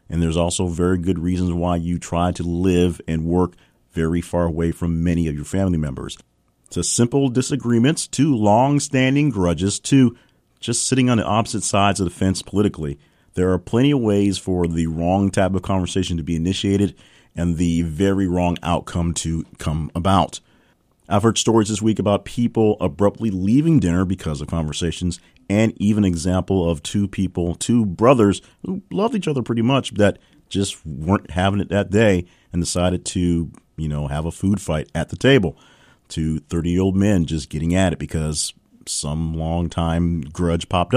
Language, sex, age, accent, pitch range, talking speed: English, male, 40-59, American, 85-100 Hz, 180 wpm